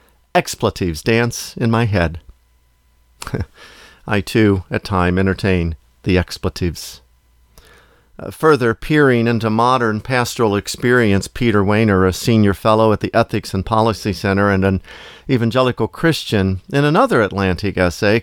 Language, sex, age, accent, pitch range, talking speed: English, male, 50-69, American, 95-135 Hz, 125 wpm